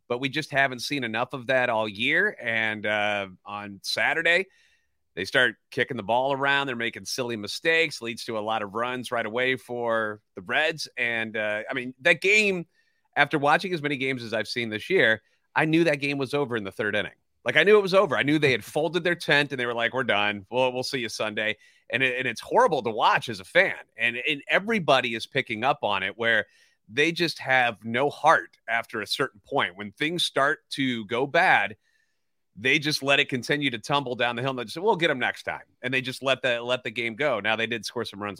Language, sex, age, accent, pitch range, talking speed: English, male, 30-49, American, 115-145 Hz, 240 wpm